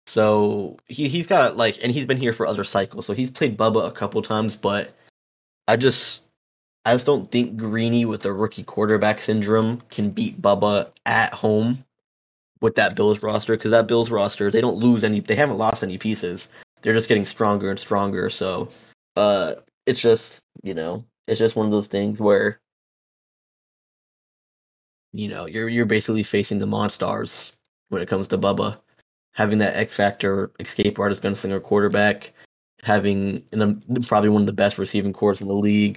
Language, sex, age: English, male, 10-29